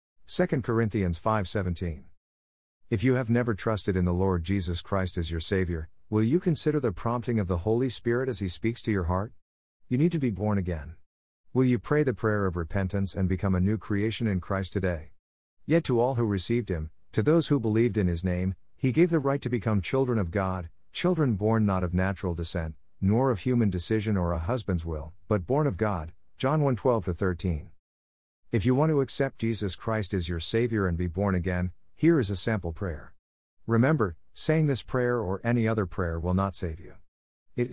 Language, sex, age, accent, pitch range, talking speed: English, male, 50-69, American, 90-120 Hz, 205 wpm